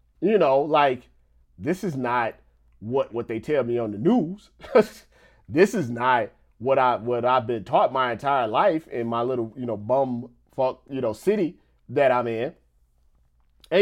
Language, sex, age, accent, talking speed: English, male, 30-49, American, 170 wpm